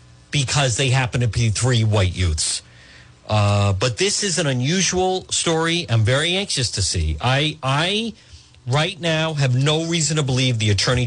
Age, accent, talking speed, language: 50-69, American, 170 wpm, English